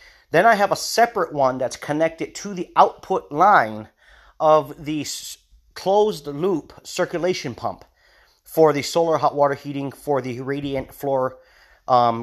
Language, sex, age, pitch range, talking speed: English, male, 30-49, 130-160 Hz, 140 wpm